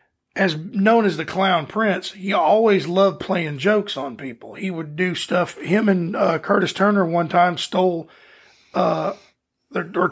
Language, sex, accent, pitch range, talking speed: English, male, American, 170-200 Hz, 160 wpm